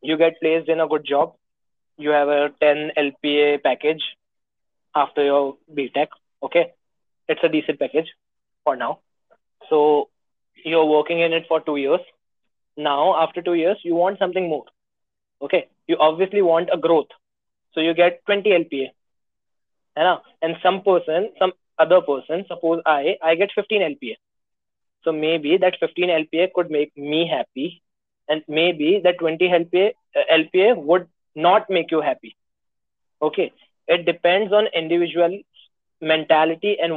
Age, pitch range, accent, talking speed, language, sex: 20-39, 155-185 Hz, native, 150 wpm, Hindi, male